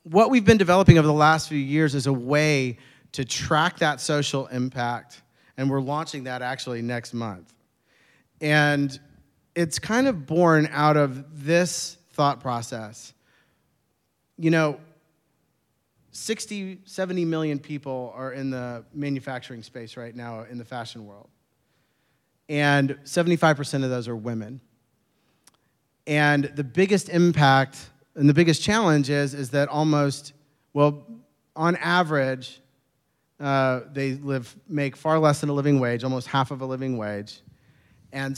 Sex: male